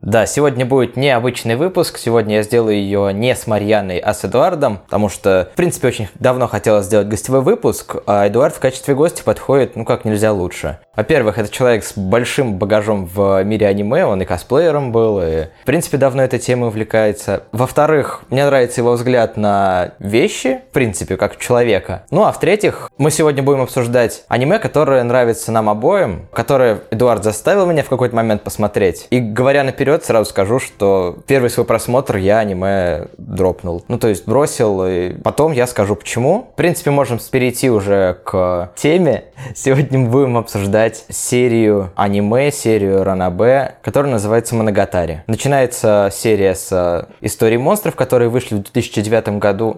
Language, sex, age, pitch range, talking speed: Russian, male, 20-39, 100-125 Hz, 165 wpm